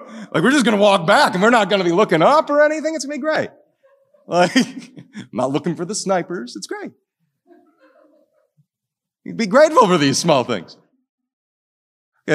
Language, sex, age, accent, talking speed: English, male, 40-59, American, 190 wpm